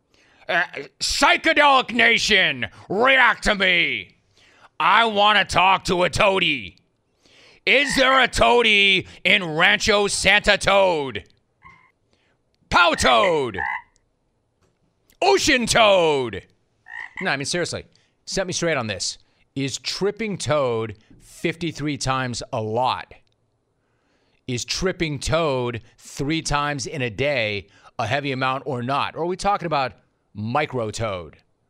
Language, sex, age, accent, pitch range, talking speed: English, male, 30-49, American, 115-165 Hz, 115 wpm